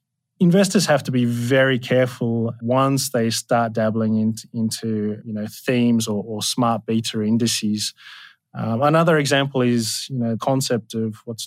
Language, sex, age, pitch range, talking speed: English, male, 30-49, 115-135 Hz, 150 wpm